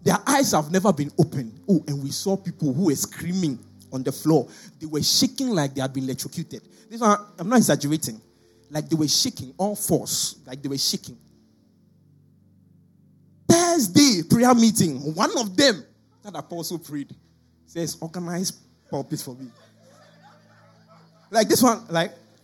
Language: English